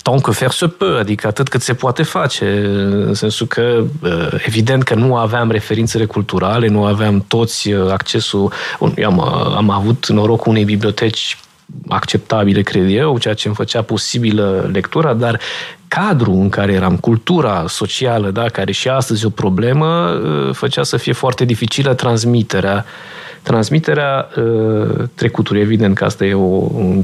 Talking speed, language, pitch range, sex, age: 155 wpm, Romanian, 100-130 Hz, male, 20-39